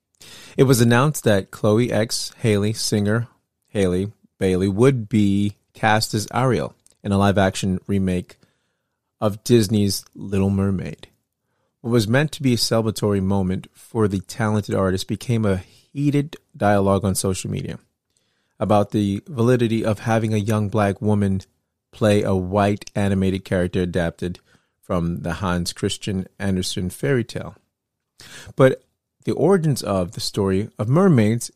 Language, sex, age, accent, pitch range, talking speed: English, male, 30-49, American, 100-120 Hz, 140 wpm